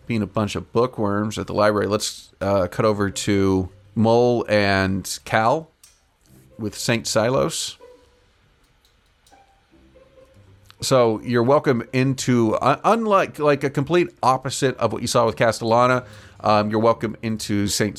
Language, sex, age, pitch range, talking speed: English, male, 40-59, 95-115 Hz, 130 wpm